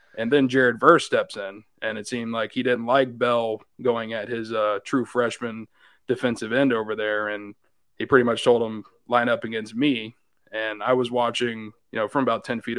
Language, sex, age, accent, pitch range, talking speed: English, male, 20-39, American, 110-125 Hz, 205 wpm